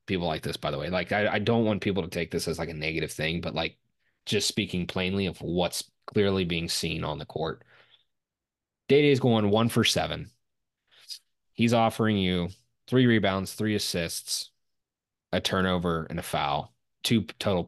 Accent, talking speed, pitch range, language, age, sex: American, 185 wpm, 95-130 Hz, English, 20-39, male